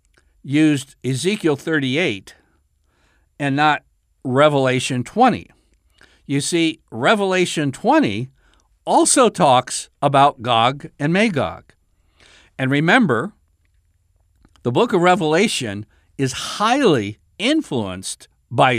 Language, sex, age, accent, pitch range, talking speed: English, male, 60-79, American, 120-170 Hz, 85 wpm